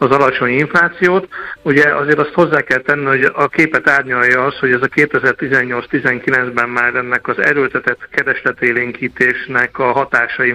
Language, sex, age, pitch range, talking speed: Hungarian, male, 60-79, 125-145 Hz, 140 wpm